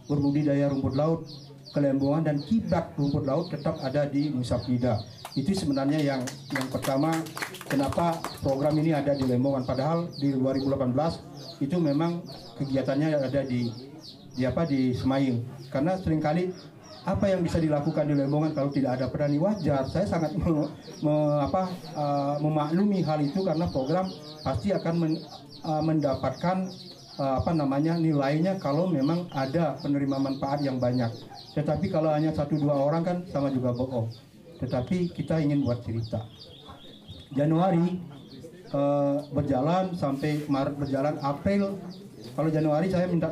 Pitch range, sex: 135-160 Hz, male